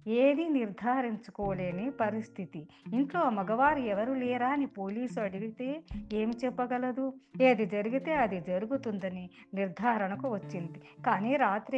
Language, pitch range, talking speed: Telugu, 195-260 Hz, 100 wpm